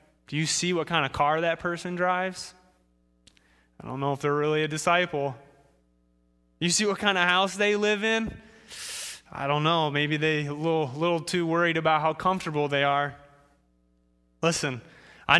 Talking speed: 170 wpm